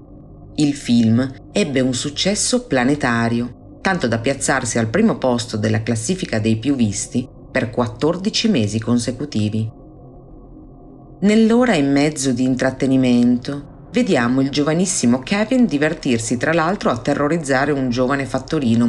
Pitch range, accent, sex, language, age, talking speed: 120-150 Hz, native, female, Italian, 40-59, 120 wpm